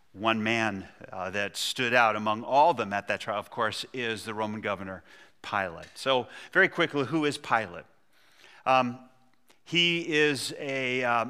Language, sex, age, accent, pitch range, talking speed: English, male, 40-59, American, 115-140 Hz, 165 wpm